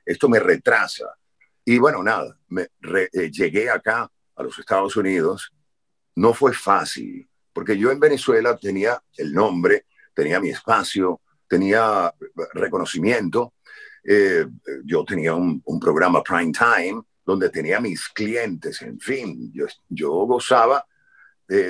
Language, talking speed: Spanish, 135 wpm